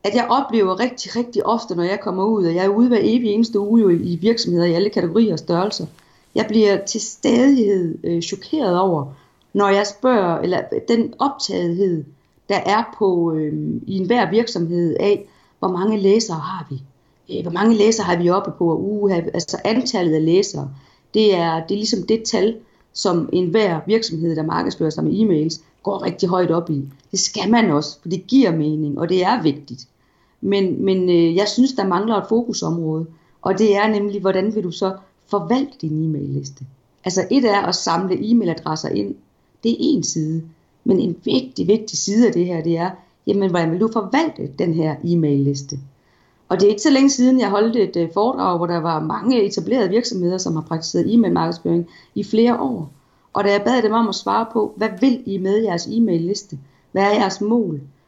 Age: 30-49